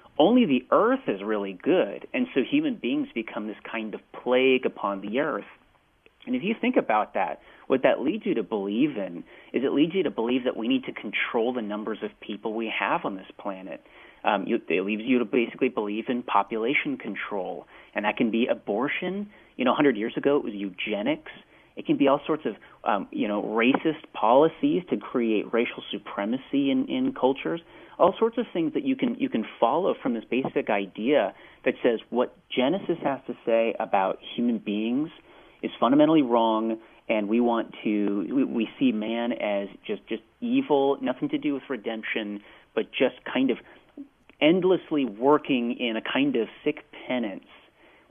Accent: American